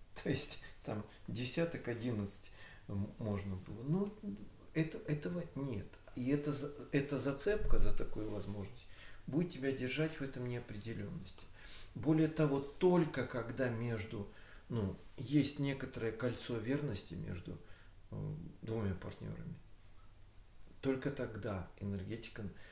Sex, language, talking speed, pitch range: male, Russian, 100 wpm, 100-140 Hz